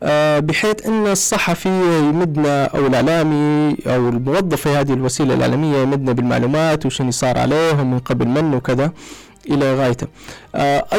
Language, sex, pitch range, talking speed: Arabic, male, 130-160 Hz, 130 wpm